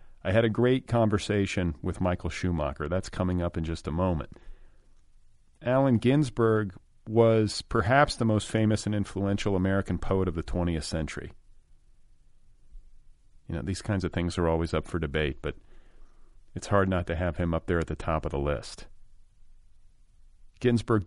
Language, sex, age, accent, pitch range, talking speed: English, male, 40-59, American, 90-110 Hz, 160 wpm